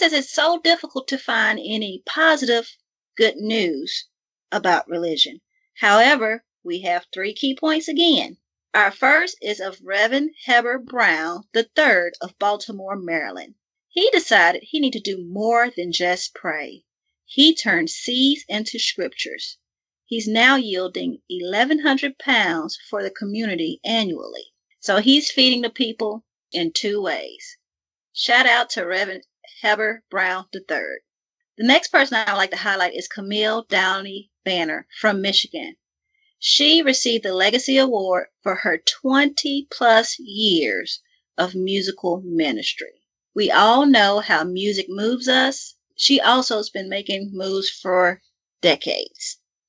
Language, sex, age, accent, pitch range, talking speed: English, female, 40-59, American, 195-300 Hz, 135 wpm